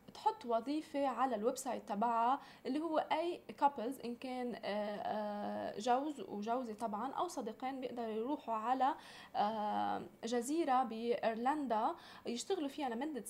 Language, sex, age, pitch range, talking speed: Arabic, female, 20-39, 225-280 Hz, 115 wpm